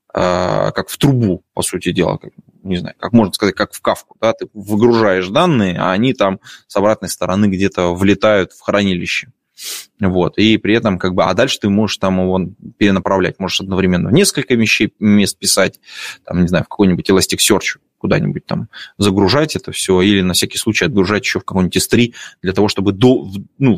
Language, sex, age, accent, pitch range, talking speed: Russian, male, 20-39, native, 95-115 Hz, 185 wpm